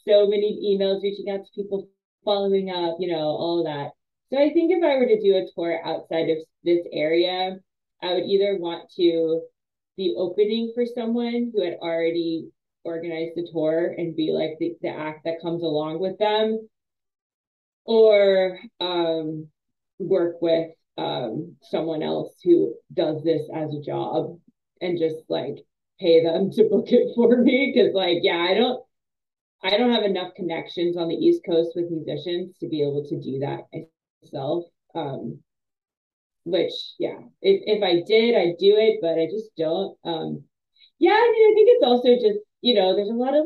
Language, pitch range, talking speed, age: English, 165-220 Hz, 175 wpm, 20-39